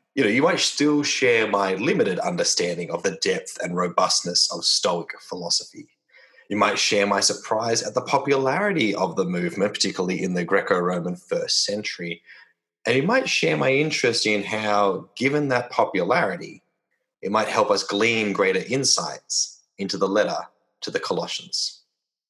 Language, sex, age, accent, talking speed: English, male, 30-49, Australian, 155 wpm